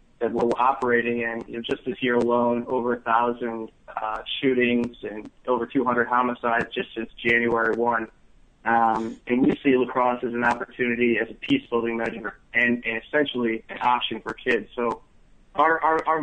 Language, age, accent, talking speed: English, 30-49, American, 175 wpm